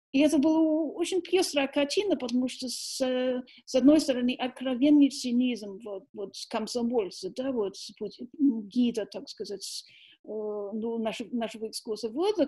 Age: 50-69